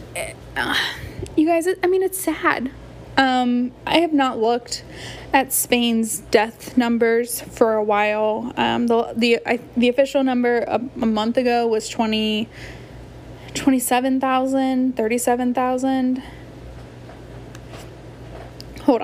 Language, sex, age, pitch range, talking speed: English, female, 10-29, 230-265 Hz, 125 wpm